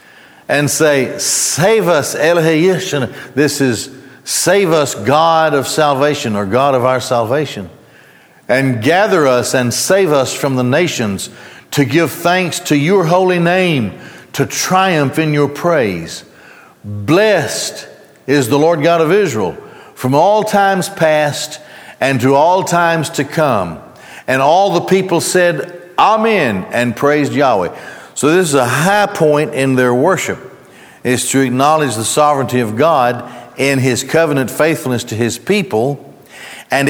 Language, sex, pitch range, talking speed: English, male, 130-165 Hz, 145 wpm